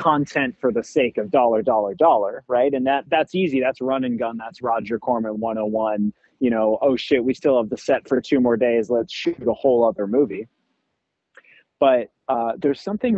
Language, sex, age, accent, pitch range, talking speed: English, male, 20-39, American, 110-145 Hz, 200 wpm